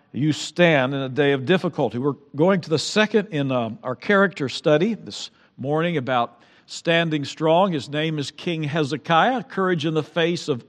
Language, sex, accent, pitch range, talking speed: English, male, American, 135-170 Hz, 175 wpm